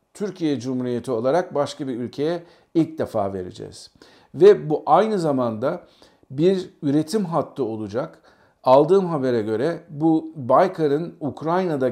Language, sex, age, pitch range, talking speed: Turkish, male, 50-69, 125-160 Hz, 115 wpm